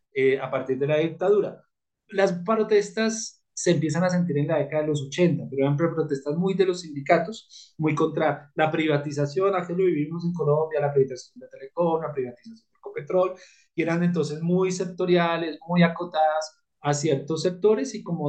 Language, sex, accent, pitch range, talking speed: Spanish, male, Colombian, 145-185 Hz, 180 wpm